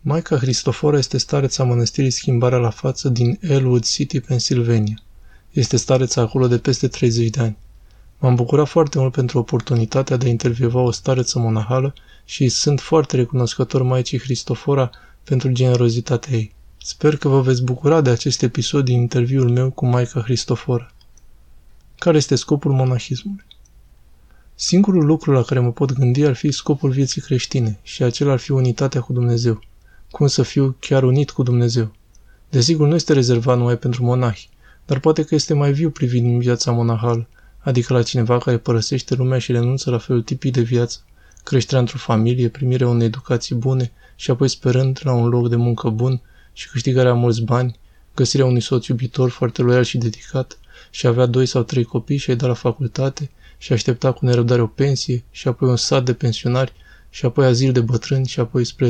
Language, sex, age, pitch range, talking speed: Romanian, male, 20-39, 120-135 Hz, 175 wpm